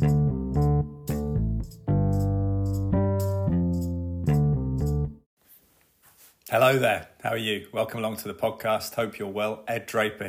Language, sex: English, male